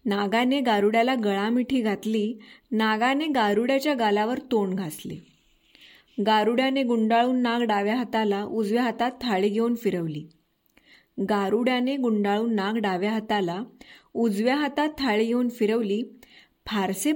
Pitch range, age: 205-250 Hz, 20-39